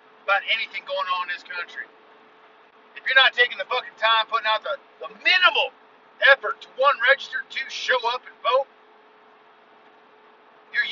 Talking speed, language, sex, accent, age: 160 wpm, English, male, American, 50-69